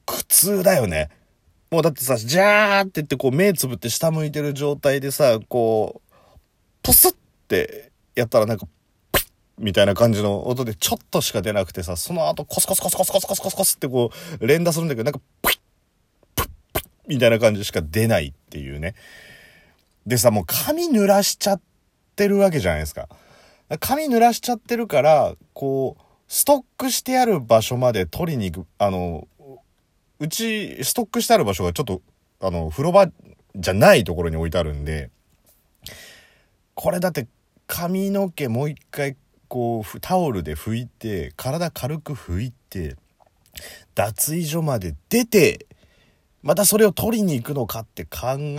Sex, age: male, 30-49